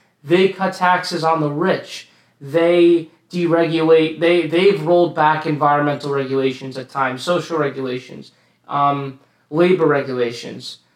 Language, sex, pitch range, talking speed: English, male, 160-190 Hz, 115 wpm